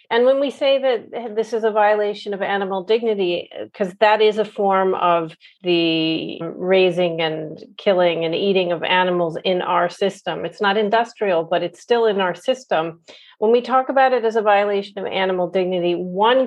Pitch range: 165-195 Hz